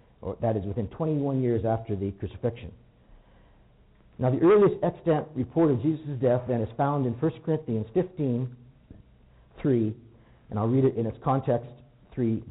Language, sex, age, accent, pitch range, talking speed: English, male, 50-69, American, 110-150 Hz, 155 wpm